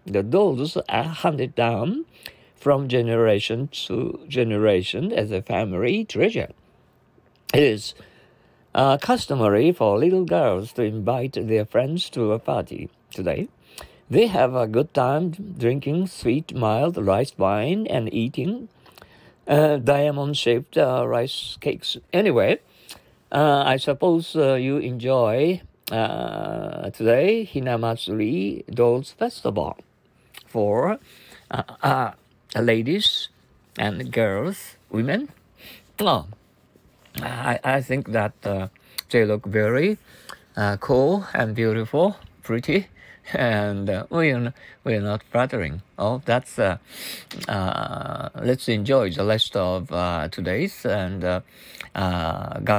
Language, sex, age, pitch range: Japanese, male, 60-79, 105-145 Hz